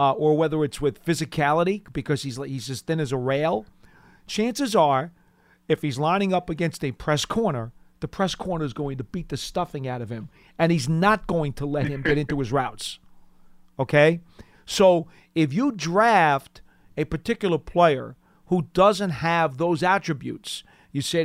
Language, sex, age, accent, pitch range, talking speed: English, male, 40-59, American, 150-210 Hz, 175 wpm